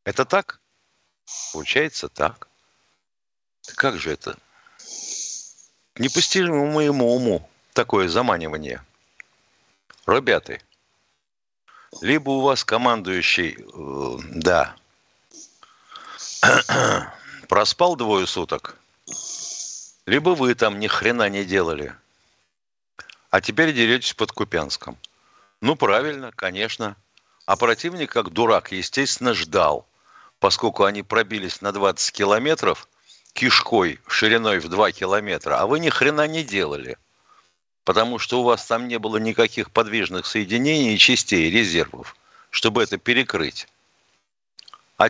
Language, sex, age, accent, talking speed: Russian, male, 60-79, native, 100 wpm